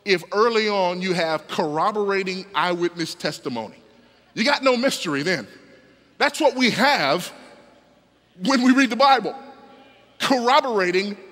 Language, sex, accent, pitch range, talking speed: English, male, American, 200-270 Hz, 120 wpm